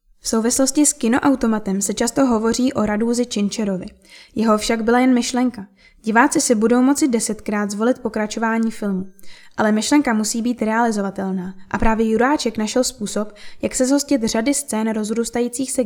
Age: 10-29